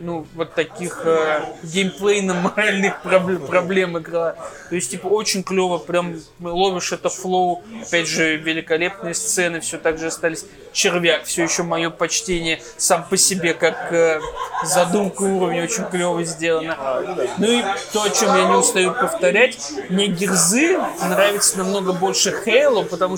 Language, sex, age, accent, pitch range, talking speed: Russian, male, 20-39, native, 175-210 Hz, 150 wpm